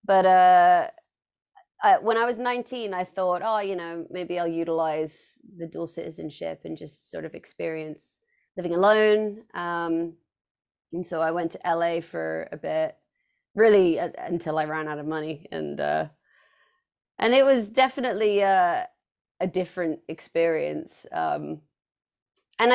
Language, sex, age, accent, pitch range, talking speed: English, female, 20-39, Australian, 165-225 Hz, 140 wpm